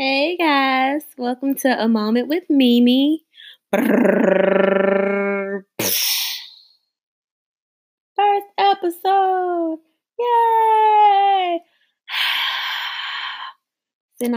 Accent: American